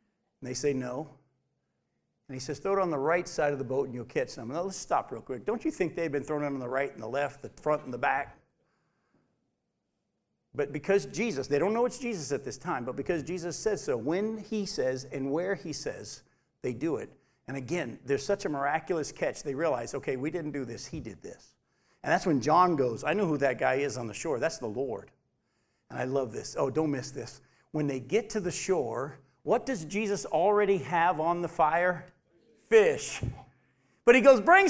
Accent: American